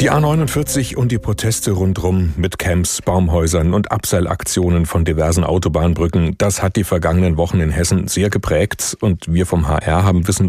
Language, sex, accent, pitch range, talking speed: German, male, German, 85-105 Hz, 165 wpm